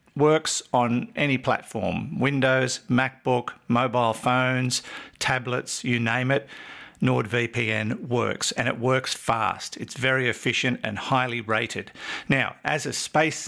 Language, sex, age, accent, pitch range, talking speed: English, male, 50-69, Australian, 115-135 Hz, 125 wpm